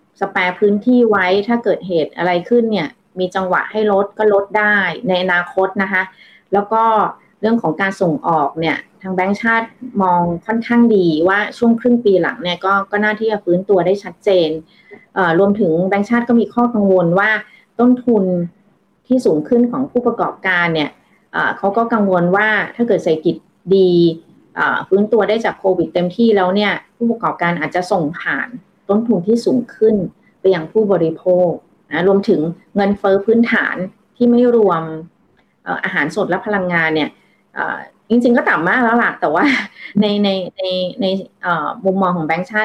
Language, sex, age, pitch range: Thai, female, 30-49, 180-225 Hz